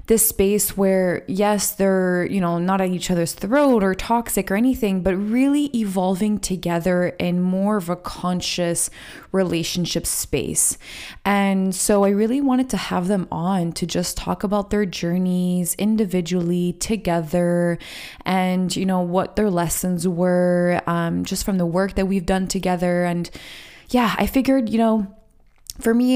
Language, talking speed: English, 155 wpm